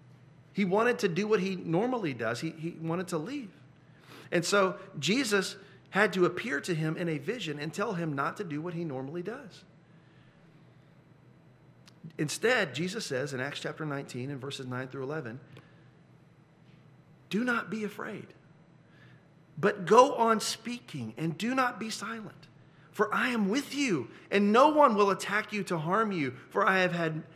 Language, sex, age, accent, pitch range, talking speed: English, male, 40-59, American, 150-195 Hz, 170 wpm